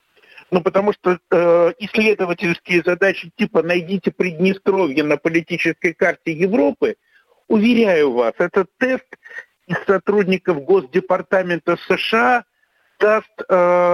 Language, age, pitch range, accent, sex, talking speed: Russian, 50-69, 170-220 Hz, native, male, 100 wpm